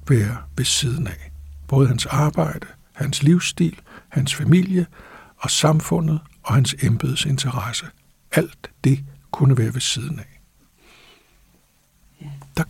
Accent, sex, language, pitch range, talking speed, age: native, male, Danish, 135-165 Hz, 115 wpm, 60-79